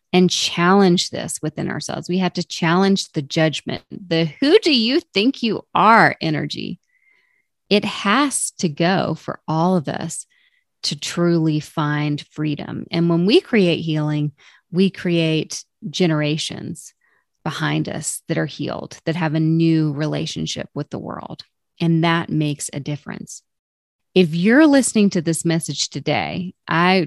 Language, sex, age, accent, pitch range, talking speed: English, female, 30-49, American, 155-195 Hz, 145 wpm